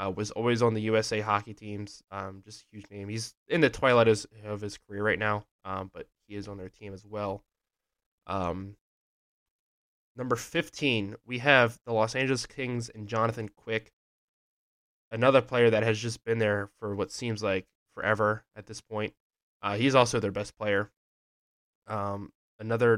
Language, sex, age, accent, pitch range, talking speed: English, male, 20-39, American, 100-115 Hz, 170 wpm